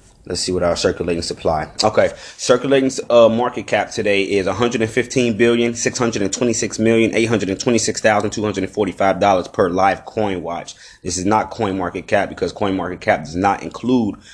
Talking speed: 130 wpm